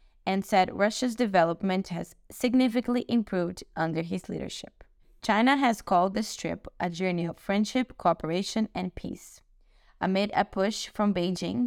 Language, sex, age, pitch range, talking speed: English, female, 20-39, 175-225 Hz, 140 wpm